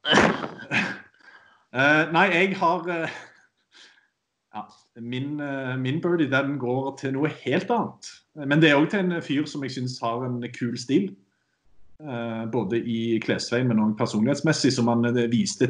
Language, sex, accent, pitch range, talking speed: English, male, Norwegian, 125-155 Hz, 155 wpm